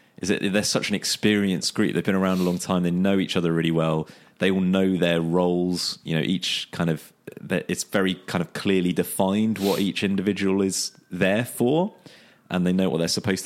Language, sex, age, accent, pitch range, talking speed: English, male, 20-39, British, 85-100 Hz, 215 wpm